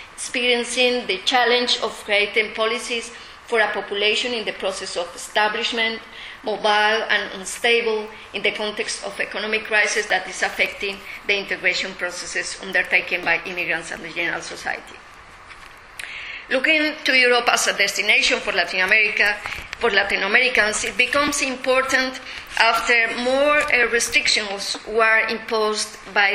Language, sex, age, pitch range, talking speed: English, female, 30-49, 205-245 Hz, 130 wpm